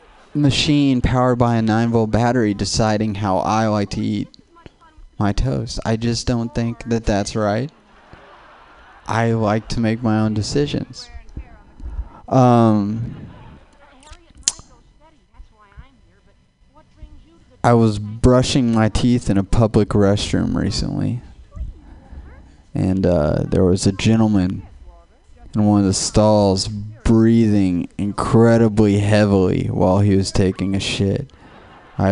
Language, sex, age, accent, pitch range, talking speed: English, male, 20-39, American, 100-125 Hz, 115 wpm